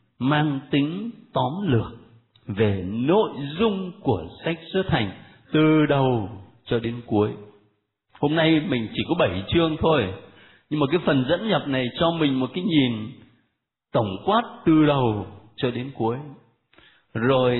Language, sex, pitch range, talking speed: Vietnamese, male, 110-165 Hz, 150 wpm